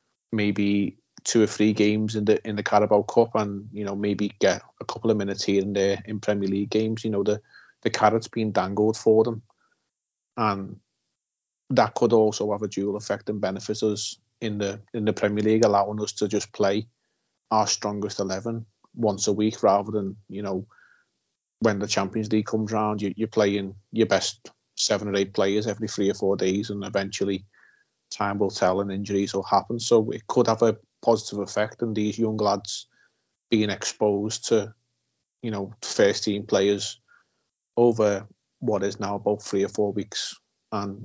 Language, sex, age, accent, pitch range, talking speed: English, male, 30-49, British, 100-110 Hz, 185 wpm